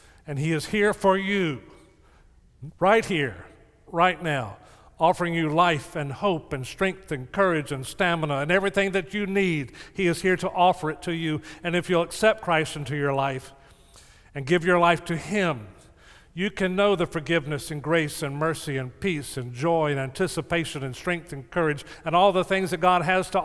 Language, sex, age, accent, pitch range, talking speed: English, male, 50-69, American, 140-185 Hz, 190 wpm